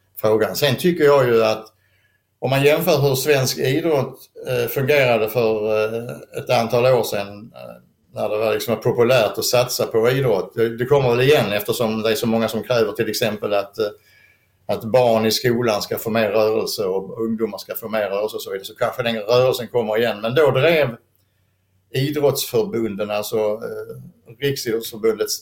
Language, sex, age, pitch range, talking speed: Swedish, male, 60-79, 105-130 Hz, 165 wpm